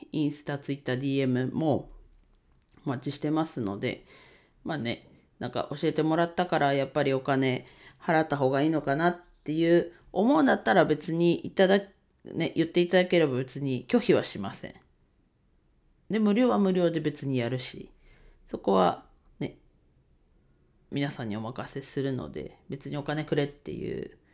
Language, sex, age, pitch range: Japanese, female, 40-59, 135-170 Hz